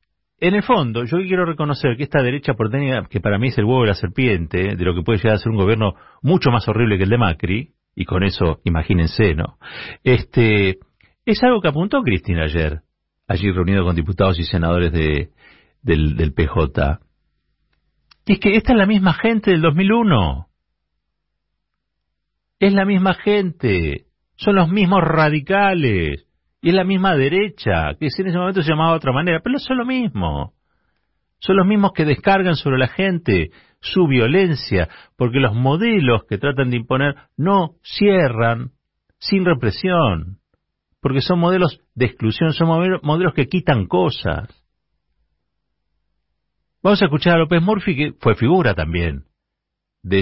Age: 40-59